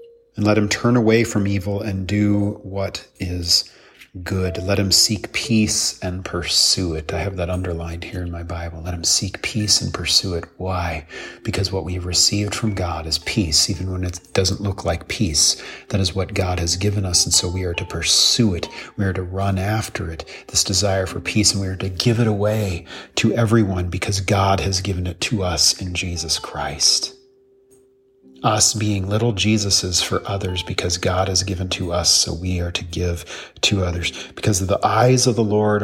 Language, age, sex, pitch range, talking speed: English, 40-59, male, 90-110 Hz, 200 wpm